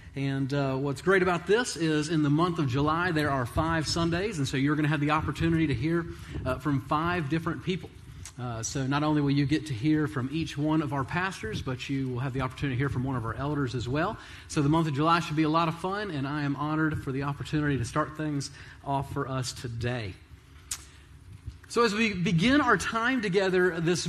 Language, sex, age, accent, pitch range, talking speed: English, male, 40-59, American, 135-175 Hz, 235 wpm